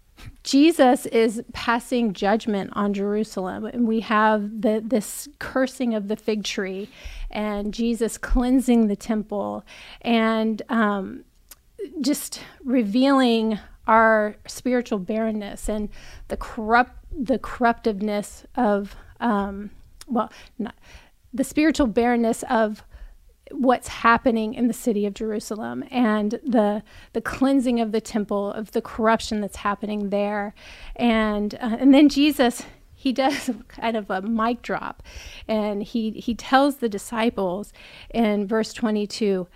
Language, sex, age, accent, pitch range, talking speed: English, female, 30-49, American, 210-245 Hz, 125 wpm